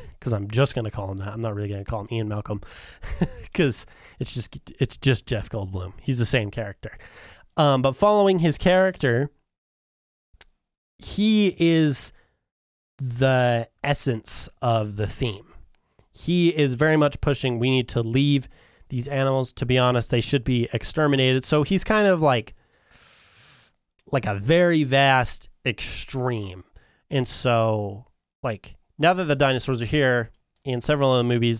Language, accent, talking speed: English, American, 150 wpm